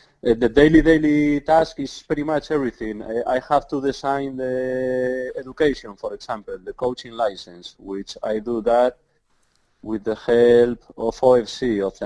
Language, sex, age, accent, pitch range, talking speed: English, male, 30-49, Spanish, 110-140 Hz, 160 wpm